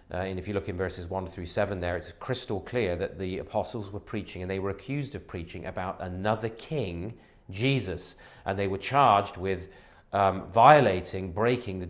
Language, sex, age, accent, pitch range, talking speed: English, male, 30-49, British, 90-110 Hz, 190 wpm